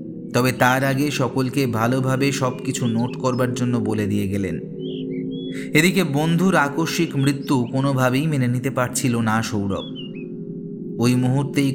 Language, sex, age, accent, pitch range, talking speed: Bengali, male, 30-49, native, 110-140 Hz, 130 wpm